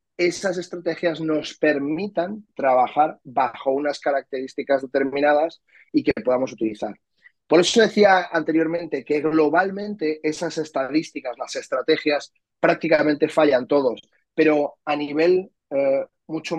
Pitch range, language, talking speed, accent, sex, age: 145-175 Hz, Spanish, 110 wpm, Spanish, male, 30-49